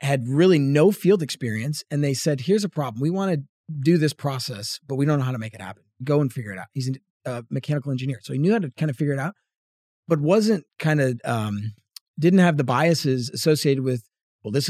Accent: American